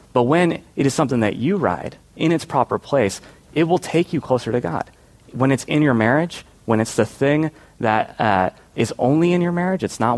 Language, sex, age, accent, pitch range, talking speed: English, male, 30-49, American, 110-145 Hz, 220 wpm